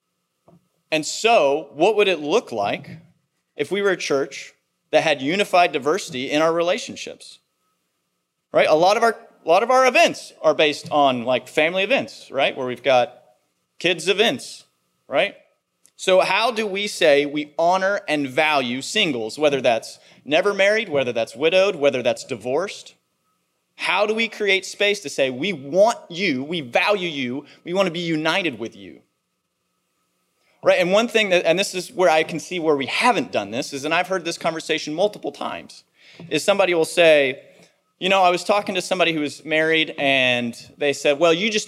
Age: 30-49